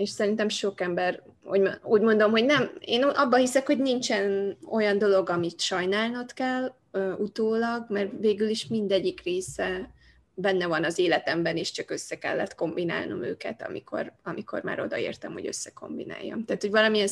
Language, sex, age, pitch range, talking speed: Hungarian, female, 20-39, 185-225 Hz, 150 wpm